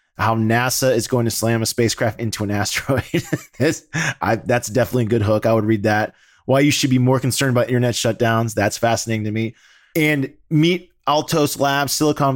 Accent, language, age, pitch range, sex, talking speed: American, English, 20-39, 100-130 Hz, male, 185 wpm